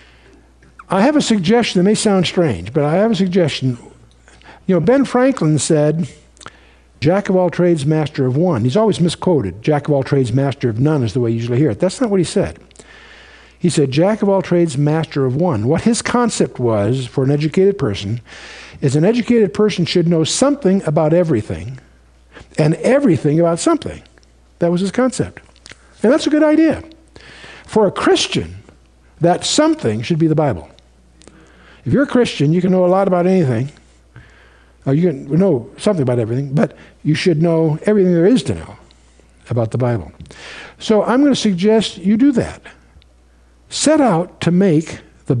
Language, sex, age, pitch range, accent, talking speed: English, male, 60-79, 120-200 Hz, American, 180 wpm